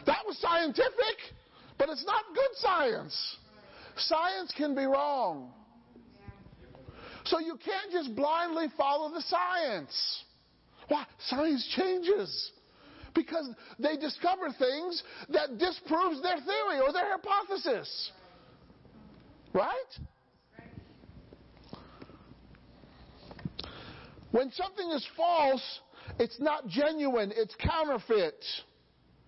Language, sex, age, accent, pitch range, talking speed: English, male, 50-69, American, 255-360 Hz, 90 wpm